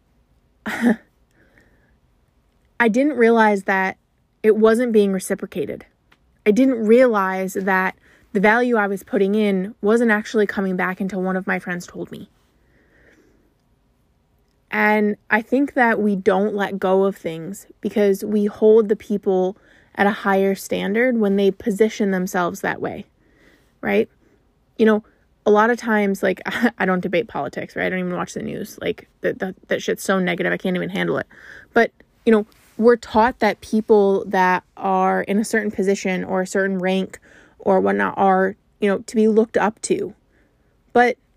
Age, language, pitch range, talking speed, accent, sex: 20-39, English, 190-220 Hz, 160 wpm, American, female